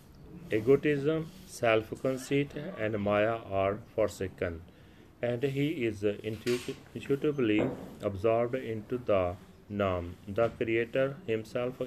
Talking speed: 95 wpm